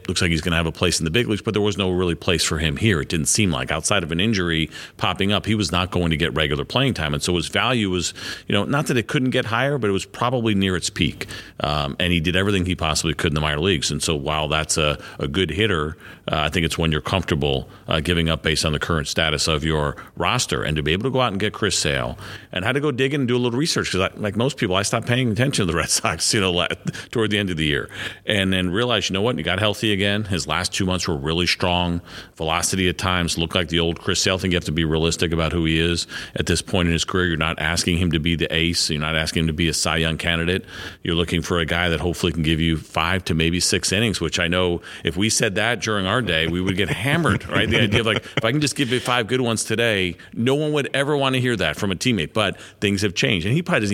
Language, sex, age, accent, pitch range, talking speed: English, male, 40-59, American, 80-105 Hz, 295 wpm